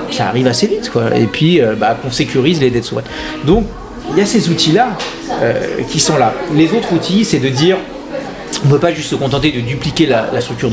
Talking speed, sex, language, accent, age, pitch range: 235 wpm, male, French, French, 40-59, 125-160 Hz